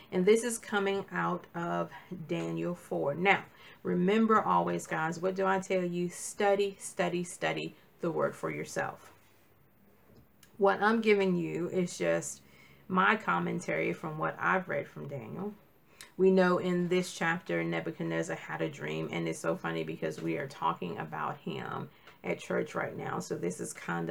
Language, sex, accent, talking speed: English, female, American, 160 wpm